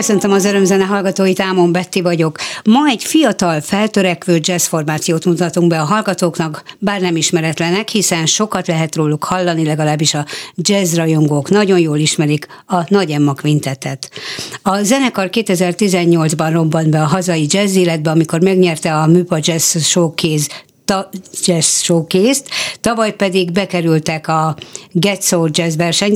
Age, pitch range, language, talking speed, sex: 60-79, 160-195 Hz, Hungarian, 140 wpm, female